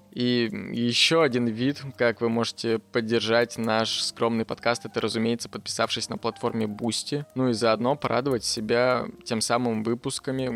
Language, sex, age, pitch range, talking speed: Russian, male, 20-39, 110-130 Hz, 140 wpm